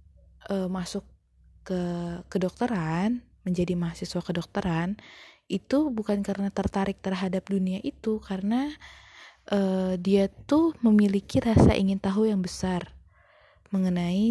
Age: 20-39